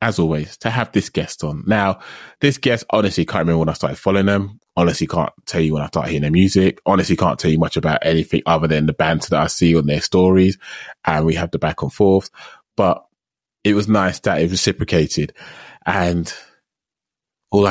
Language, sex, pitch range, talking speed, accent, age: English, male, 85-100 Hz, 205 wpm, British, 20-39